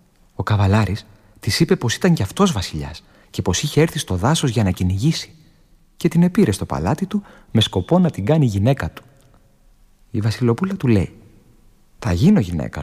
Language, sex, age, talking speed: Greek, male, 30-49, 180 wpm